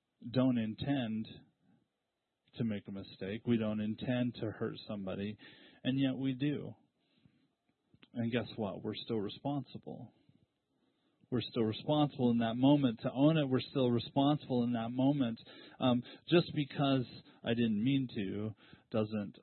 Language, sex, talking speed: English, male, 140 wpm